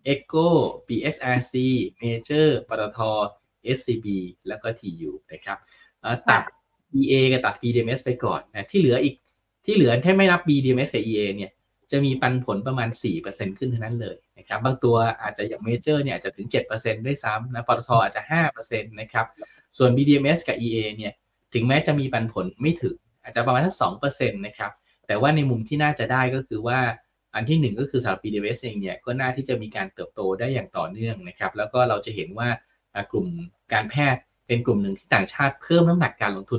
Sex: male